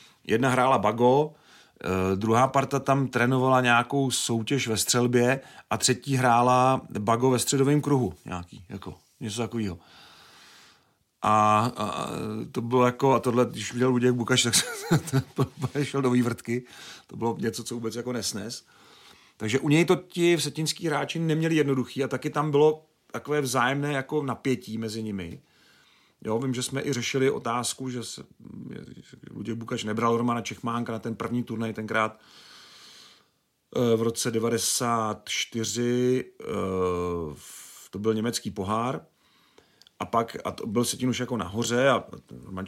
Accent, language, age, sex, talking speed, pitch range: native, Czech, 40-59, male, 145 wpm, 110-135 Hz